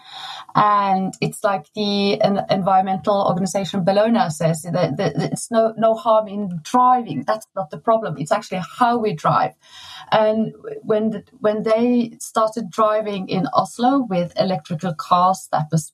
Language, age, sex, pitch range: English, 30-49, female, 180-235 Hz